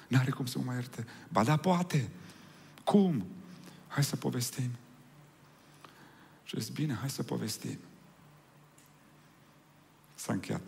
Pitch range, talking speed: 110-150 Hz, 120 wpm